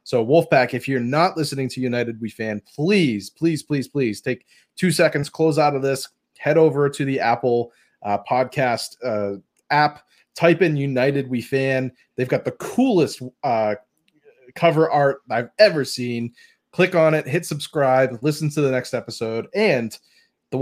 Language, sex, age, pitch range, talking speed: English, male, 30-49, 125-160 Hz, 165 wpm